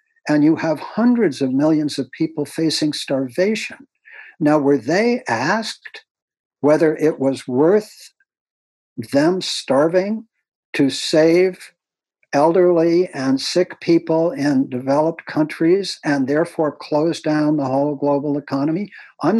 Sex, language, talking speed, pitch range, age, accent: male, English, 120 wpm, 140-200 Hz, 60-79, American